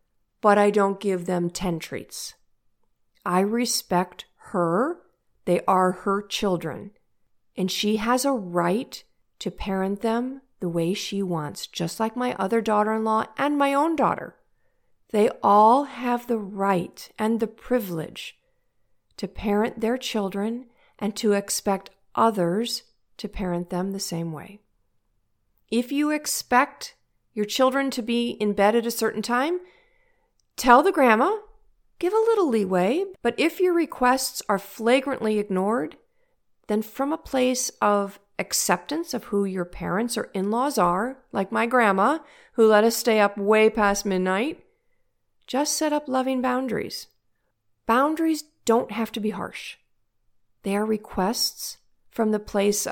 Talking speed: 140 wpm